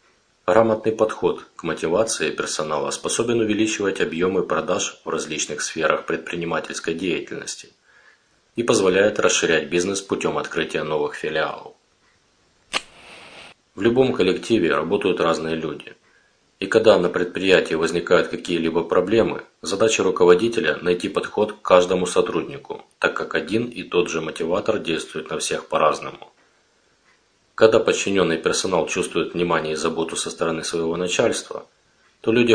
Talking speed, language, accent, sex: 120 wpm, Russian, native, male